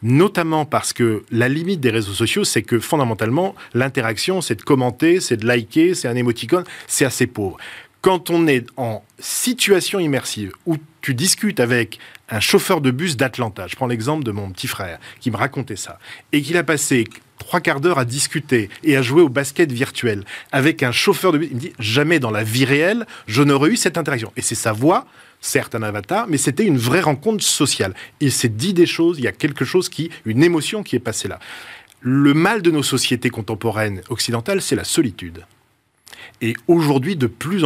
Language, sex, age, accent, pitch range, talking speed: French, male, 20-39, French, 115-170 Hz, 200 wpm